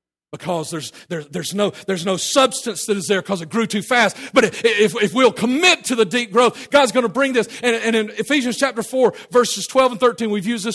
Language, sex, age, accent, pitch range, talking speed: English, male, 50-69, American, 185-265 Hz, 235 wpm